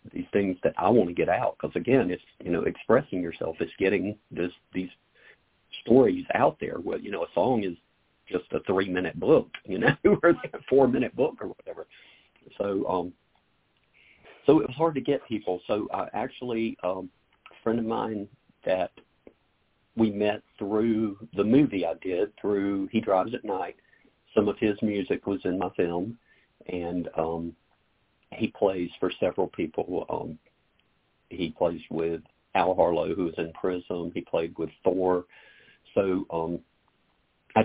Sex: male